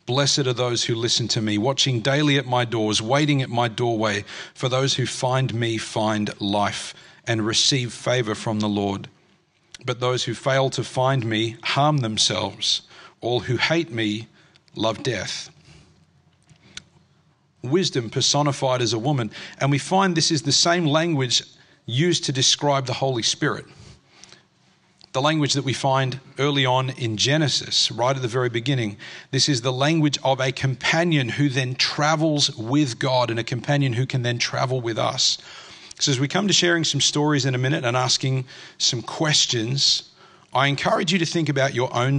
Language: English